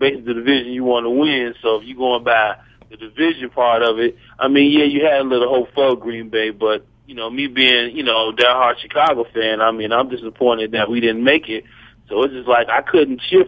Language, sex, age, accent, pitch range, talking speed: English, male, 40-59, American, 120-145 Hz, 245 wpm